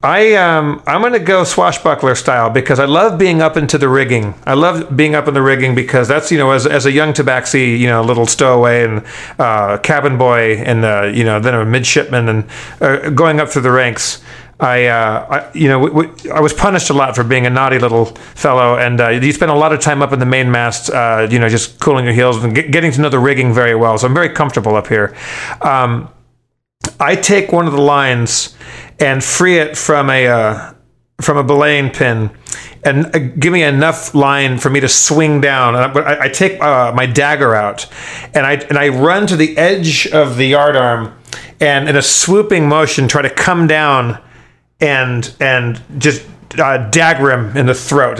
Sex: male